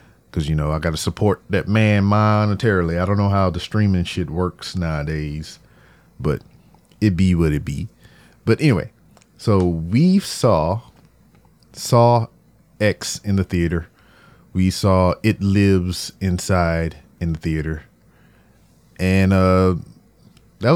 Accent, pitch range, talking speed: American, 90-115 Hz, 135 wpm